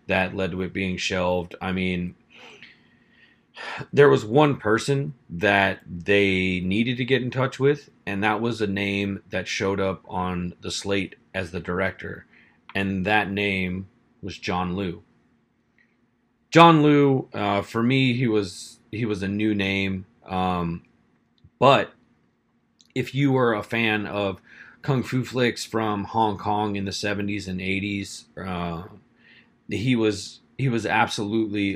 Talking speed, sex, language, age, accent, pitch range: 145 wpm, male, English, 30-49, American, 95-115 Hz